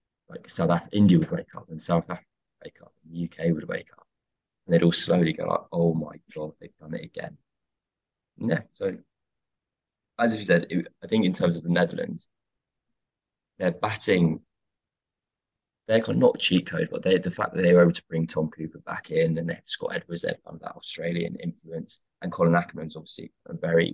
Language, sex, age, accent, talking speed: English, male, 20-39, British, 205 wpm